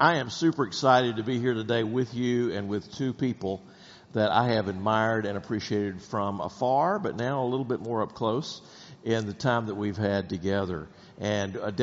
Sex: male